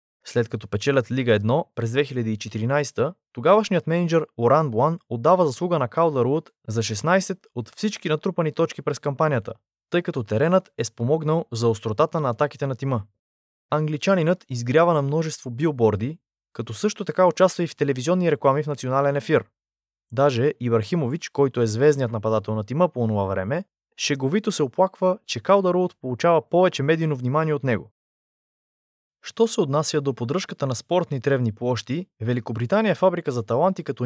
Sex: male